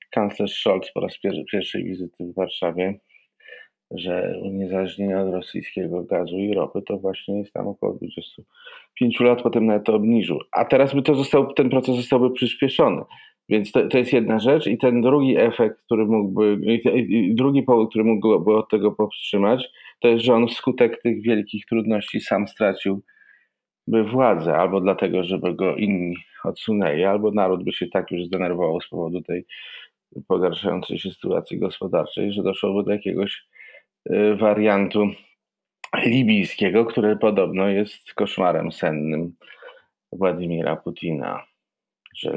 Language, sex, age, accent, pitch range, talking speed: Polish, male, 40-59, native, 95-115 Hz, 145 wpm